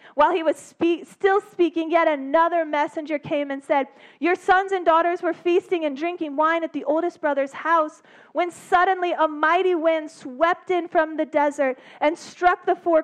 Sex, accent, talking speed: female, American, 180 wpm